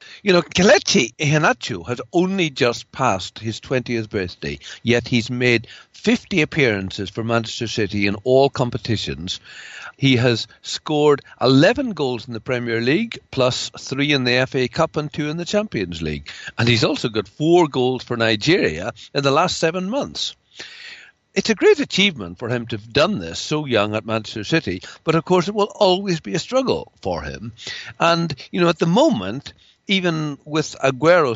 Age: 60-79